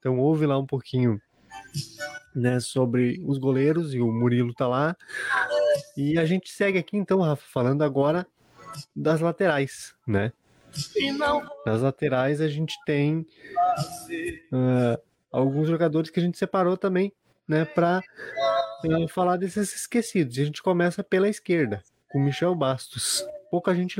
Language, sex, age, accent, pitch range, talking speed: Portuguese, male, 20-39, Brazilian, 140-180 Hz, 145 wpm